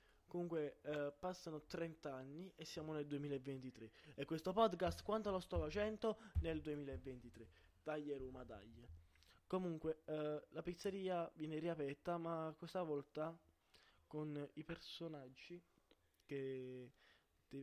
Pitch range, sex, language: 125-150 Hz, male, Italian